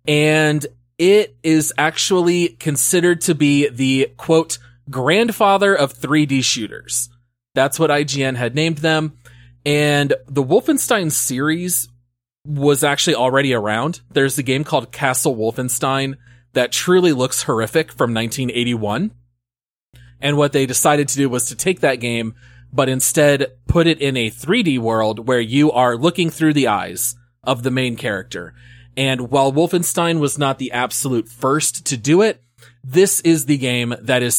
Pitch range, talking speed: 120-155 Hz, 150 wpm